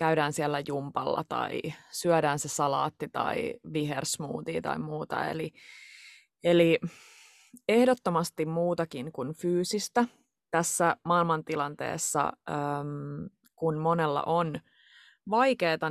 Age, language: 20-39, Finnish